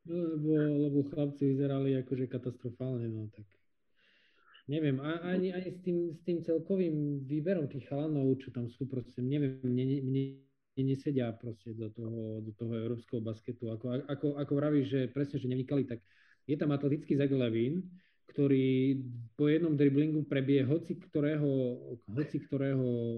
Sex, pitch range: male, 120-150 Hz